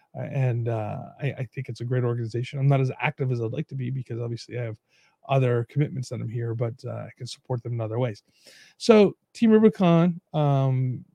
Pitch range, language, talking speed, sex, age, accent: 125-155 Hz, English, 215 wpm, male, 30-49, American